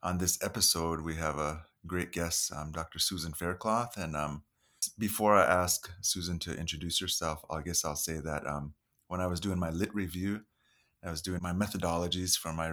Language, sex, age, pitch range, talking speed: English, male, 30-49, 80-100 Hz, 195 wpm